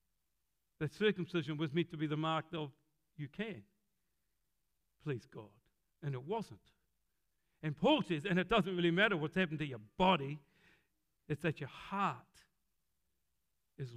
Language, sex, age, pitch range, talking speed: English, male, 60-79, 150-195 Hz, 145 wpm